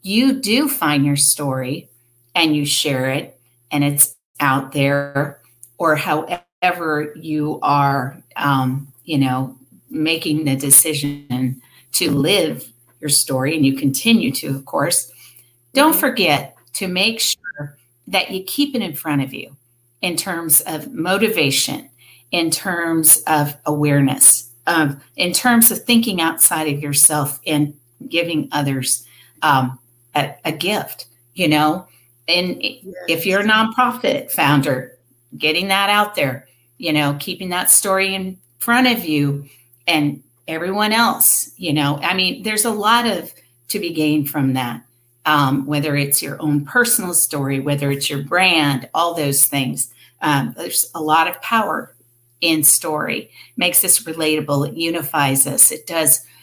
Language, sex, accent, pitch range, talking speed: English, female, American, 135-175 Hz, 145 wpm